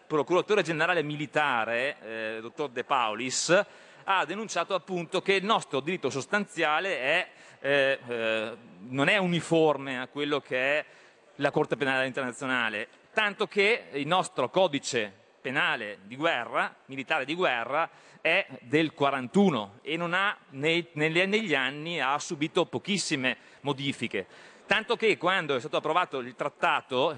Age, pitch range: 30-49, 140-195 Hz